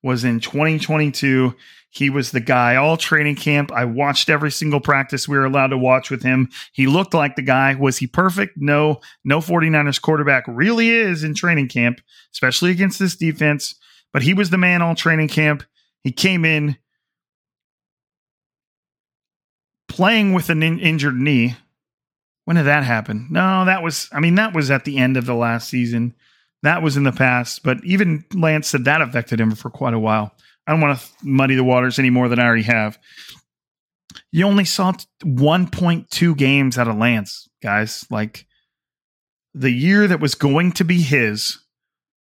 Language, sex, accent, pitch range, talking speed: English, male, American, 130-170 Hz, 175 wpm